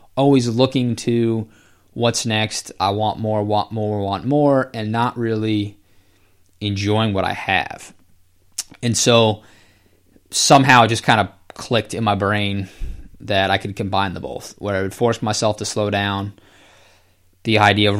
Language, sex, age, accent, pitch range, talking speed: English, male, 20-39, American, 95-110 Hz, 155 wpm